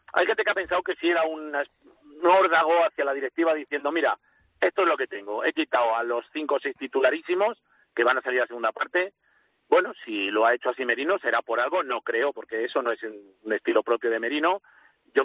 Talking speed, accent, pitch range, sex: 225 wpm, Spanish, 145-210 Hz, male